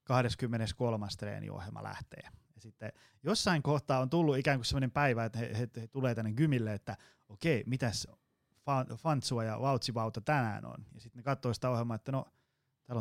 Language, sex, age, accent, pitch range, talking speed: Finnish, male, 20-39, native, 115-135 Hz, 175 wpm